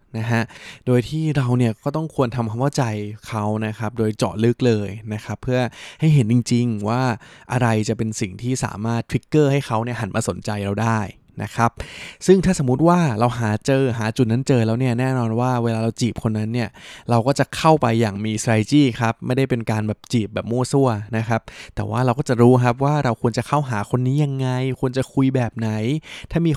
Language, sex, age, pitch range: Thai, male, 20-39, 110-130 Hz